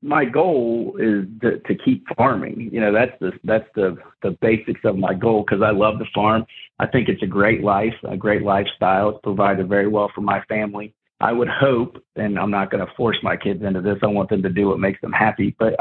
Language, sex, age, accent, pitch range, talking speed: English, male, 40-59, American, 100-110 Hz, 235 wpm